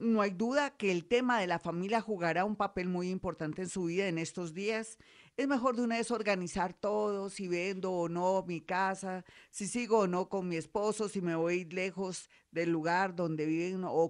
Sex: female